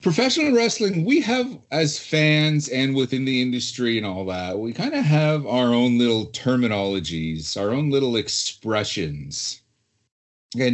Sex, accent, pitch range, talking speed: male, American, 105-145 Hz, 145 wpm